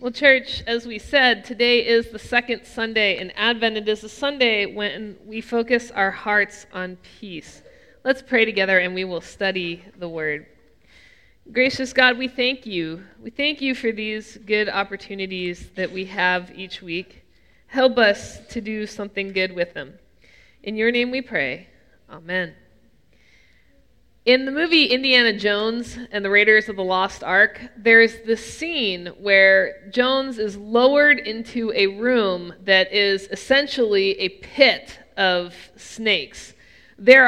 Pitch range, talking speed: 200-255 Hz, 150 wpm